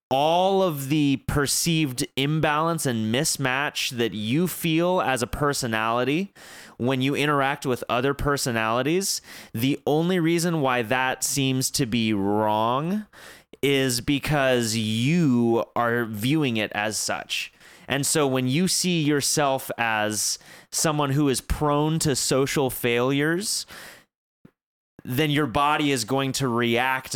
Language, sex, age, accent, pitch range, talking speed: English, male, 30-49, American, 120-155 Hz, 125 wpm